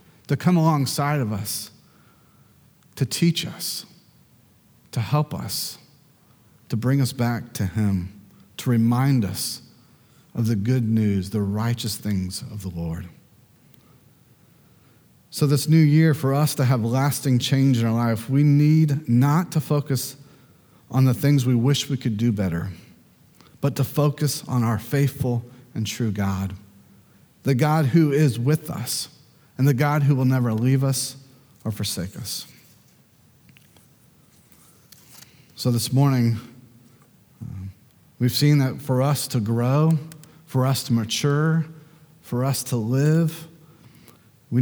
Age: 40-59